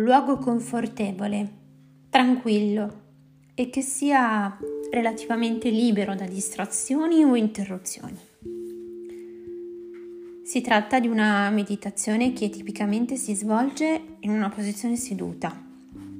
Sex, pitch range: female, 185-255 Hz